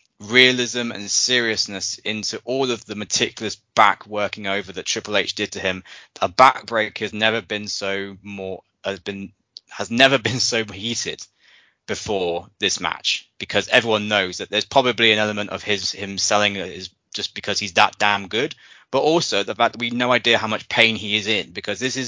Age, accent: 20-39, British